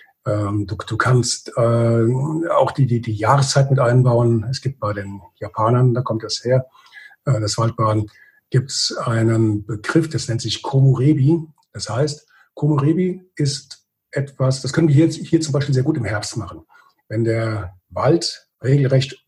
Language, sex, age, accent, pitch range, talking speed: German, male, 50-69, German, 115-150 Hz, 160 wpm